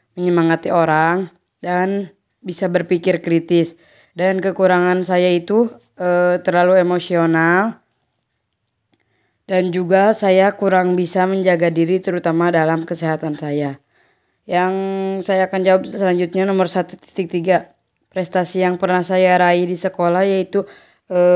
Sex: female